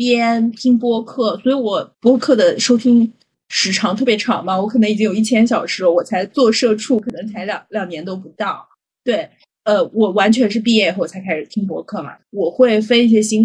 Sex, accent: female, native